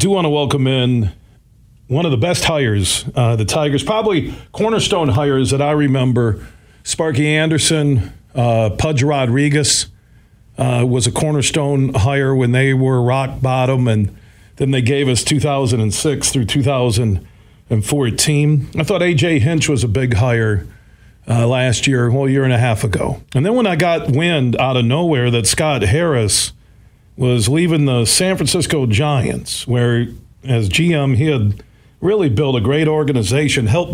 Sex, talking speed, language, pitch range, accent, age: male, 155 wpm, English, 115-145 Hz, American, 50-69